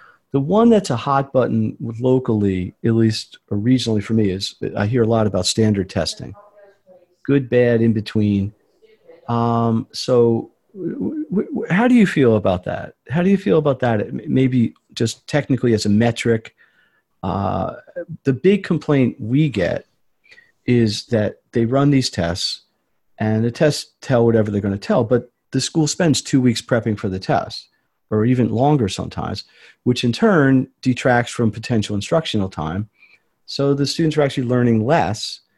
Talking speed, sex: 160 wpm, male